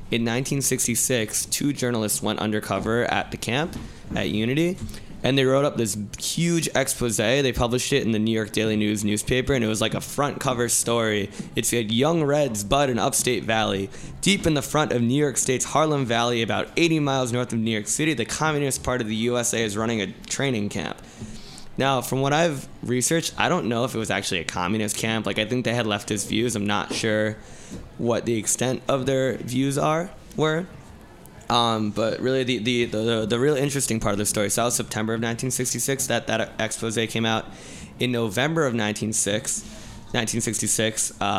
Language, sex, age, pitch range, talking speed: English, male, 20-39, 110-135 Hz, 195 wpm